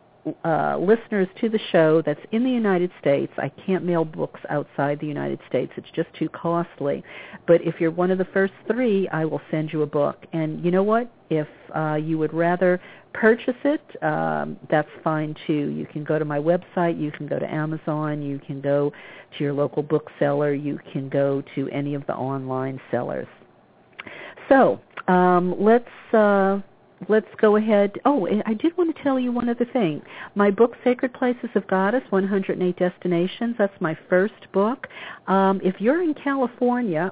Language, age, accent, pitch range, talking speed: English, 50-69, American, 155-215 Hz, 180 wpm